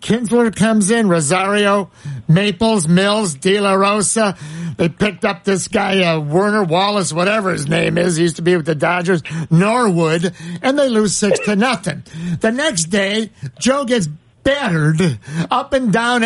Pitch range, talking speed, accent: 170-225 Hz, 160 wpm, American